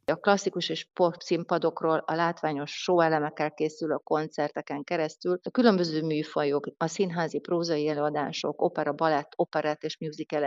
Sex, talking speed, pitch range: female, 145 wpm, 145-170 Hz